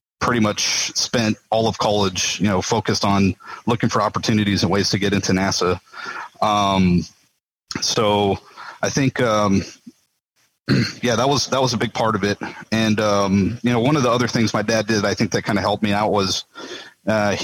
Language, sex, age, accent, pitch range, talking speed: English, male, 30-49, American, 105-120 Hz, 195 wpm